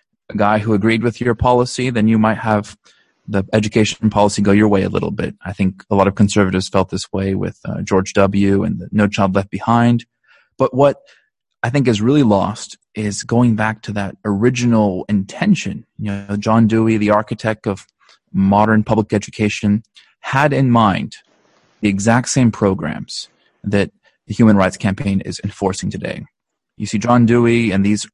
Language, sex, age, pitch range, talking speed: English, male, 30-49, 100-120 Hz, 175 wpm